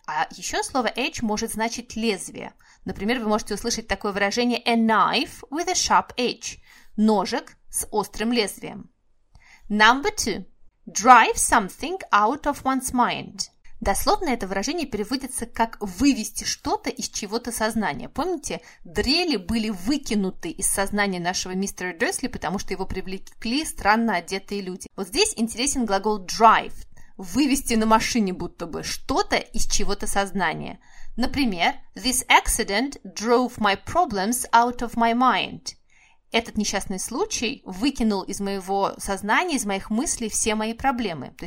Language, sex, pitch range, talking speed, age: Russian, female, 200-255 Hz, 135 wpm, 30-49